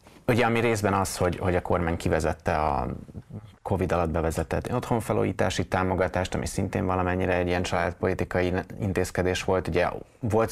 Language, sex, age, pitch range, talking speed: Hungarian, male, 30-49, 85-105 Hz, 145 wpm